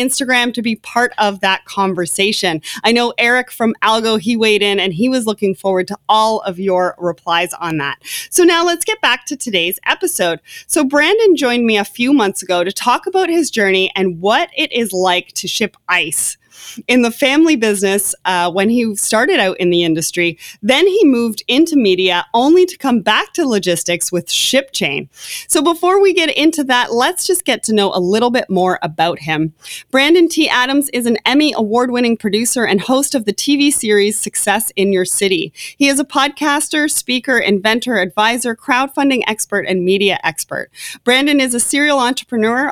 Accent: American